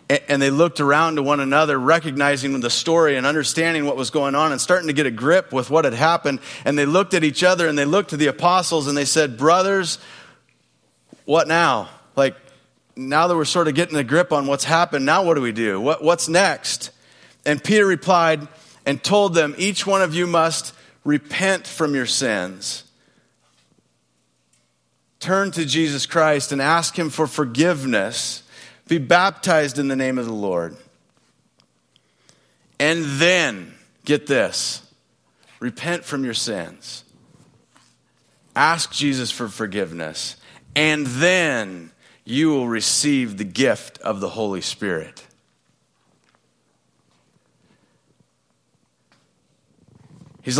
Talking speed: 140 wpm